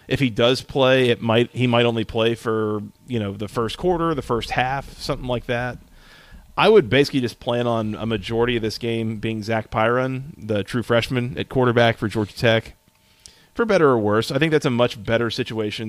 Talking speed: 210 wpm